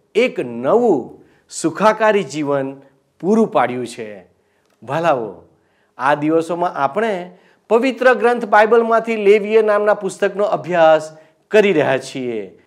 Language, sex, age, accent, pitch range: Gujarati, male, 50-69, native, 165-225 Hz